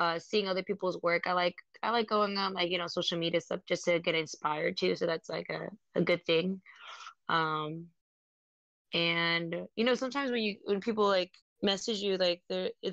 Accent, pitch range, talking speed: American, 165-200 Hz, 200 wpm